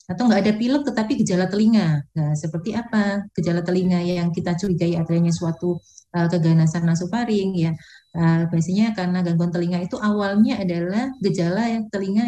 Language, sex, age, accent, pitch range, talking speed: Indonesian, female, 30-49, native, 165-200 Hz, 155 wpm